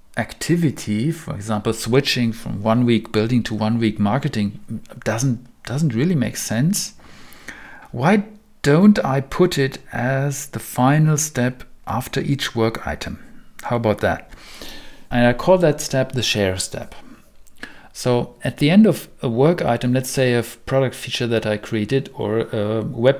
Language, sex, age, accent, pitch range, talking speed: English, male, 50-69, German, 110-140 Hz, 155 wpm